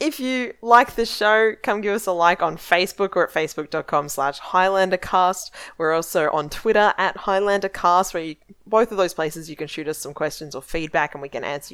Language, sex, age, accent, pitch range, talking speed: English, female, 20-39, Australian, 155-215 Hz, 200 wpm